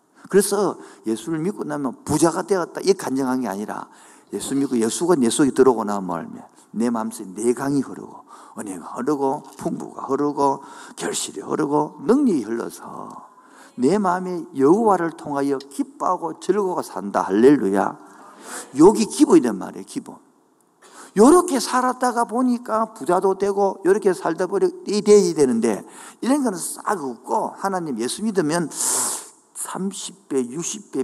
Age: 50-69